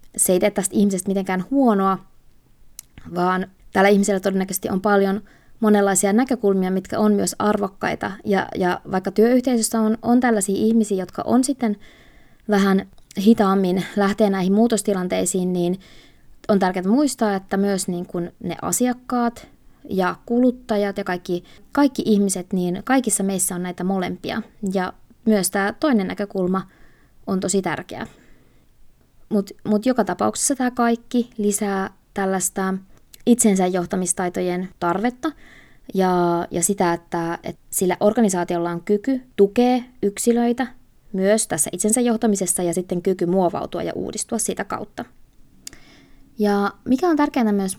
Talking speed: 130 wpm